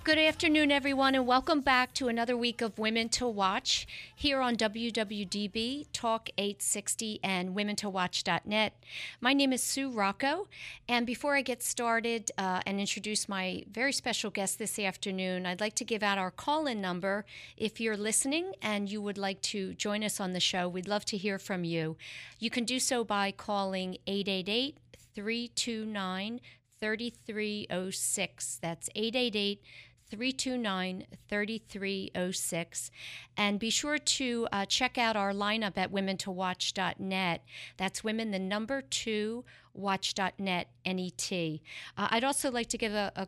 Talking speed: 145 wpm